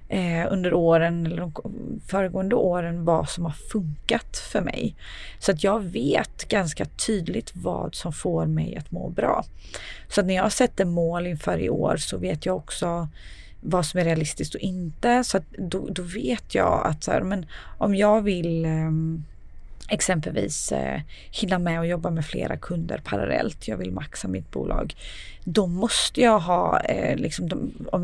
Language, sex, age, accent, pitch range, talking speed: Swedish, female, 30-49, native, 165-200 Hz, 165 wpm